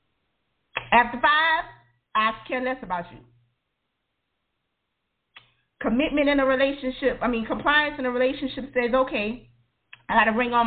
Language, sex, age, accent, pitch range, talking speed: English, female, 40-59, American, 220-280 Hz, 135 wpm